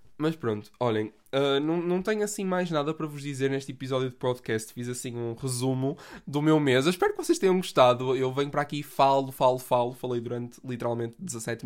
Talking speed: 205 wpm